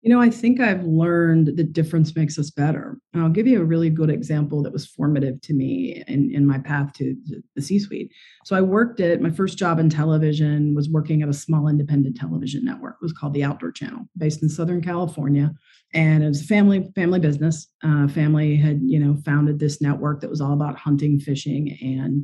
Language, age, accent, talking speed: English, 40-59, American, 215 wpm